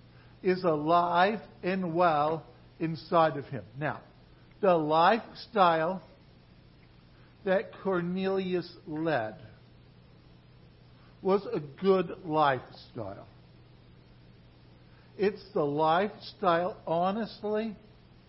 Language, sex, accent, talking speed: English, male, American, 70 wpm